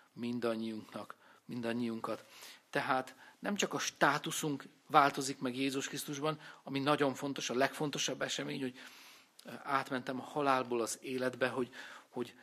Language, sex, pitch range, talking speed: Hungarian, male, 120-145 Hz, 120 wpm